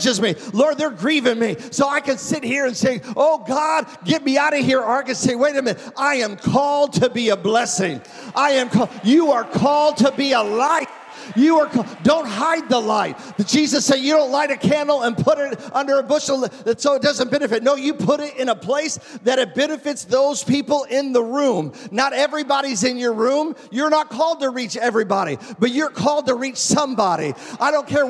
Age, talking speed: 50-69, 215 wpm